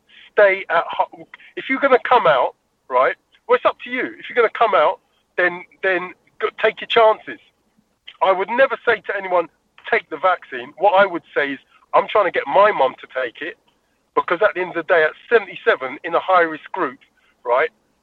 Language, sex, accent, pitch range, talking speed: English, male, British, 165-230 Hz, 200 wpm